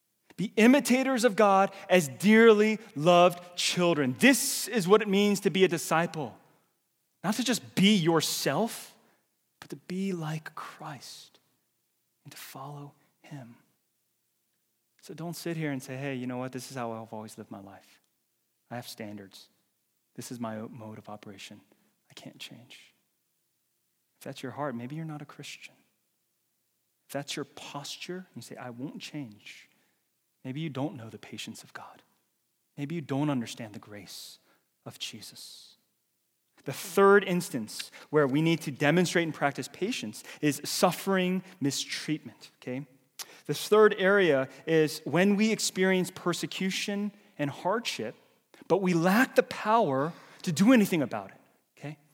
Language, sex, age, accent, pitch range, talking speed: English, male, 30-49, American, 130-195 Hz, 150 wpm